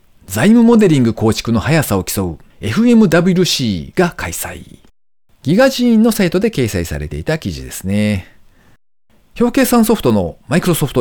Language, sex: Japanese, male